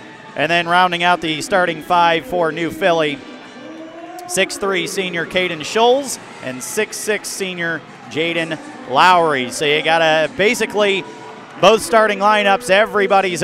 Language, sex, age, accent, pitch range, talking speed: English, male, 40-59, American, 150-200 Hz, 120 wpm